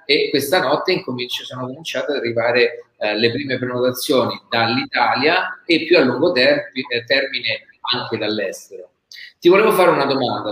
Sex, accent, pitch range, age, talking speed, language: male, native, 115-140 Hz, 40-59, 135 wpm, Italian